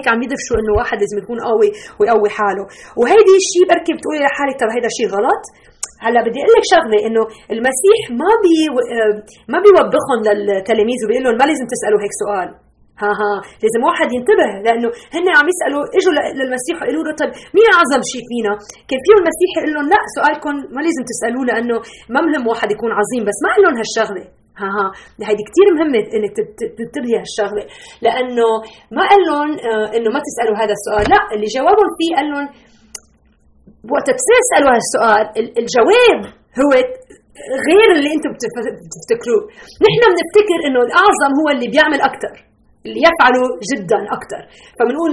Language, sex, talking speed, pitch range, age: Arabic, female, 155 wpm, 225-330 Hz, 30-49